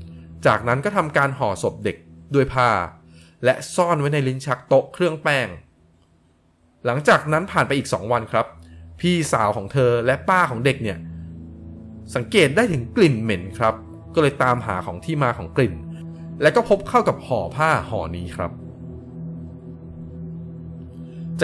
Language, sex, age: Thai, male, 20-39